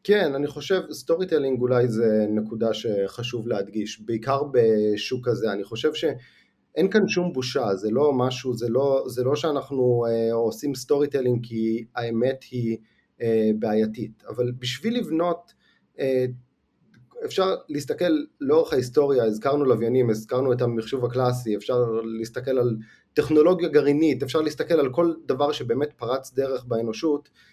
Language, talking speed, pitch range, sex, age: English, 130 wpm, 120-165 Hz, male, 30-49